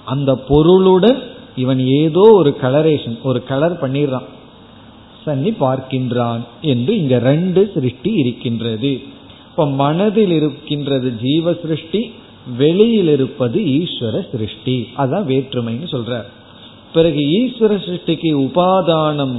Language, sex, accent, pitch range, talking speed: Tamil, male, native, 125-165 Hz, 100 wpm